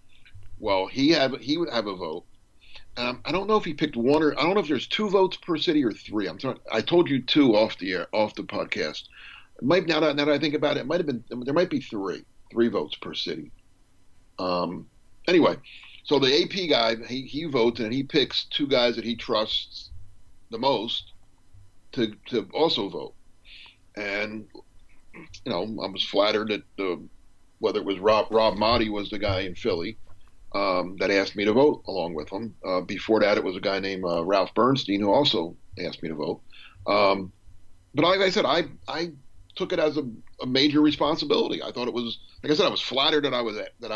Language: English